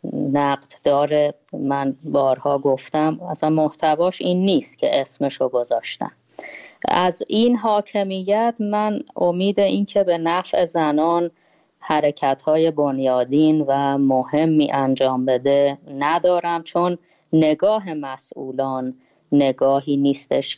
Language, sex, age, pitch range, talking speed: Persian, female, 30-49, 140-170 Hz, 95 wpm